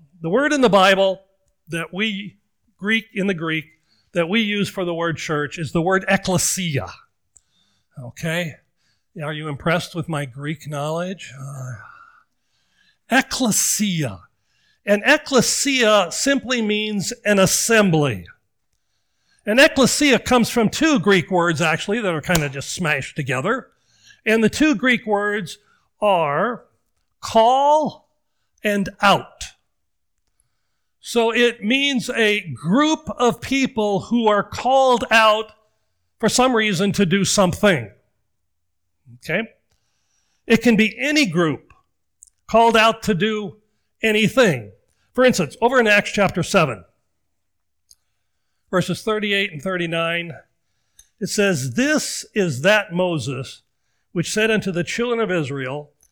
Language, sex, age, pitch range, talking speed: English, male, 50-69, 155-220 Hz, 120 wpm